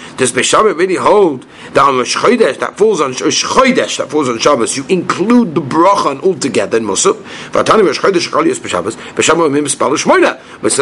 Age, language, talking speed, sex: 50-69, English, 150 wpm, male